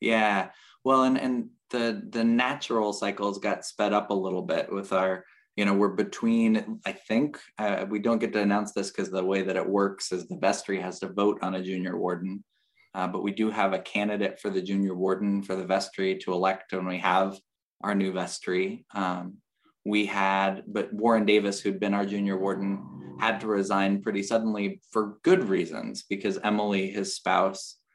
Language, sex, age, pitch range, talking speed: English, male, 20-39, 95-110 Hz, 195 wpm